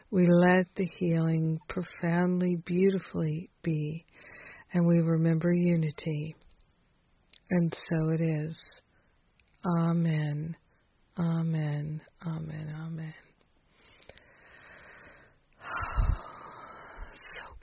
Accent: American